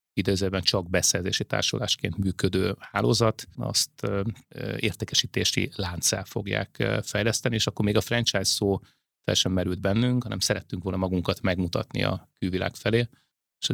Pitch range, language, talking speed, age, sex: 95-115 Hz, Hungarian, 125 wpm, 30-49, male